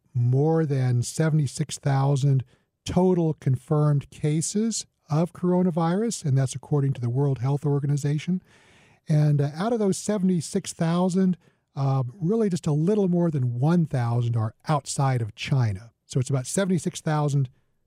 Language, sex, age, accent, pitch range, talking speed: English, male, 40-59, American, 125-160 Hz, 130 wpm